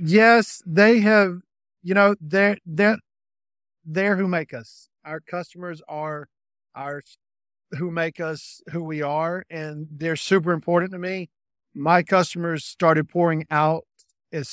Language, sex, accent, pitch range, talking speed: English, male, American, 150-180 Hz, 135 wpm